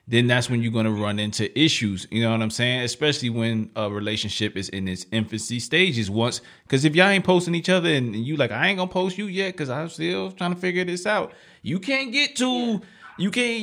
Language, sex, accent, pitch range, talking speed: English, male, American, 110-155 Hz, 235 wpm